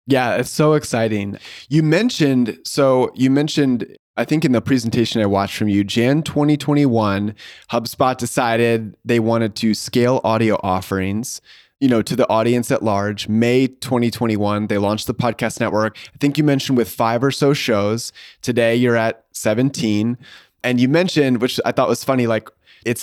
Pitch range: 110-135 Hz